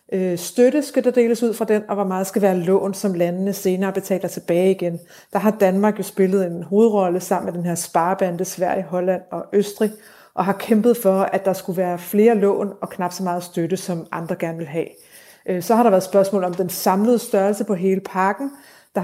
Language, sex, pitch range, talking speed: Danish, female, 185-220 Hz, 215 wpm